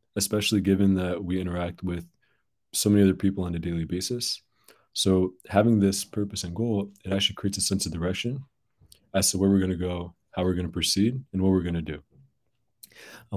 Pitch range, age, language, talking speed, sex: 90-105 Hz, 20-39, English, 205 wpm, male